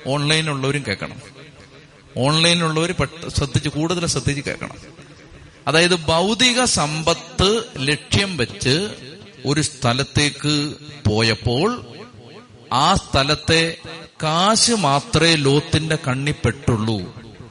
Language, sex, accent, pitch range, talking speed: Malayalam, male, native, 125-165 Hz, 70 wpm